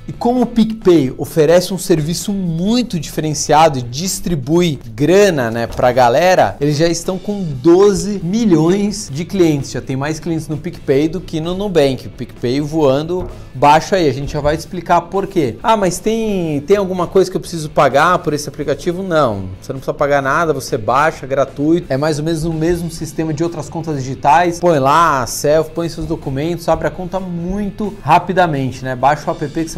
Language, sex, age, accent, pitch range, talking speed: Portuguese, male, 30-49, Brazilian, 145-185 Hz, 190 wpm